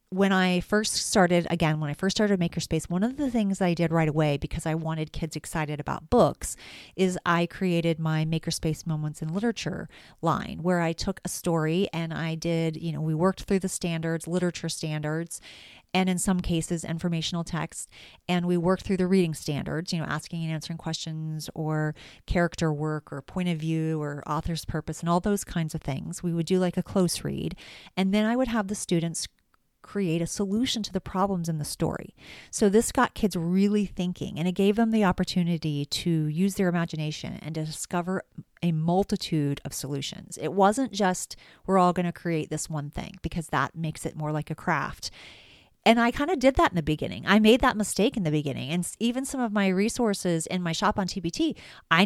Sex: female